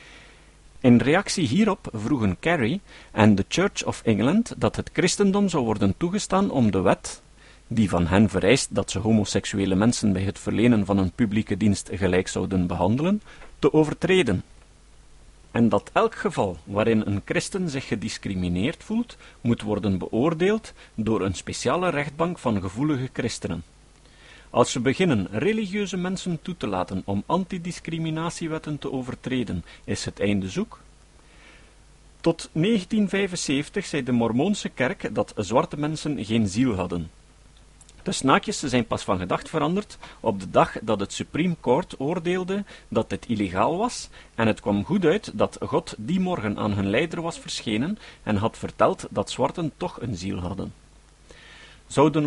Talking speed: 150 wpm